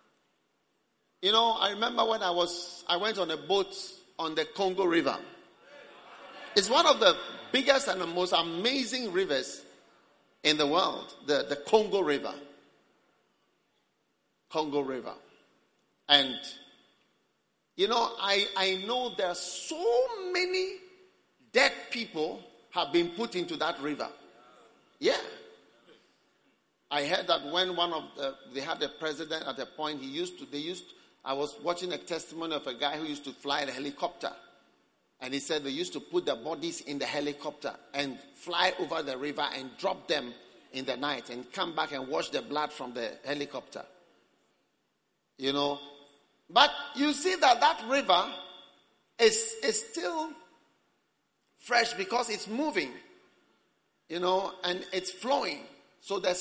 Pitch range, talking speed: 145-240 Hz, 150 wpm